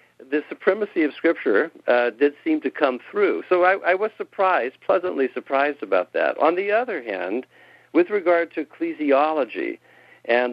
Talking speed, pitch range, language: 160 wpm, 120-155 Hz, English